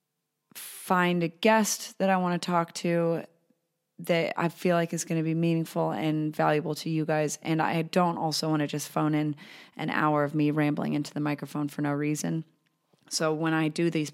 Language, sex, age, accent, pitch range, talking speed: English, female, 30-49, American, 150-175 Hz, 205 wpm